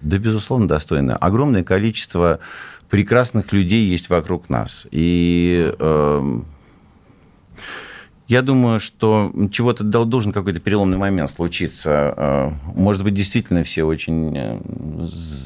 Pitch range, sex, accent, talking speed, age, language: 75-100 Hz, male, native, 100 wpm, 50-69, Russian